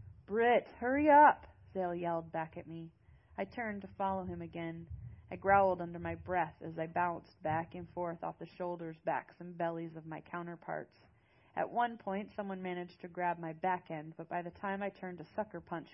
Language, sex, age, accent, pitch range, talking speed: English, female, 30-49, American, 165-195 Hz, 200 wpm